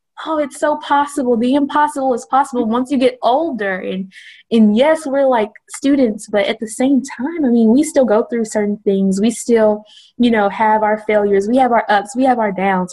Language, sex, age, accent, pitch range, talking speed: English, female, 20-39, American, 200-250 Hz, 215 wpm